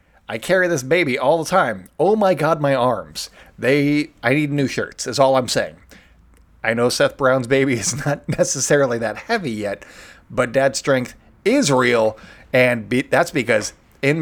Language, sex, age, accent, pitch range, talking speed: English, male, 30-49, American, 115-140 Hz, 175 wpm